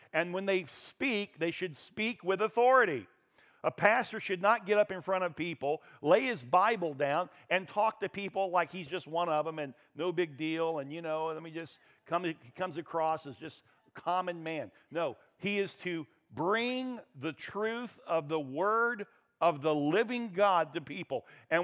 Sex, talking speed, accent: male, 190 wpm, American